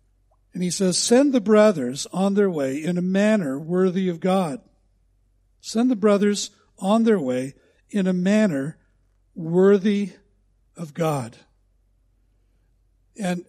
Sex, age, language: male, 60-79, English